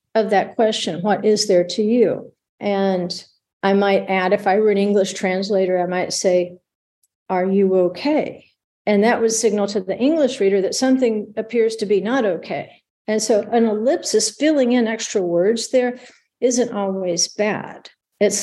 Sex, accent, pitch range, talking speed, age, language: female, American, 190-225 Hz, 170 wpm, 50-69, English